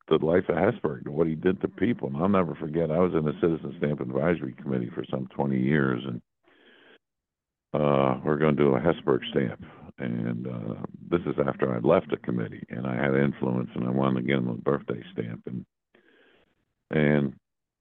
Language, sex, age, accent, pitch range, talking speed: English, male, 60-79, American, 65-75 Hz, 200 wpm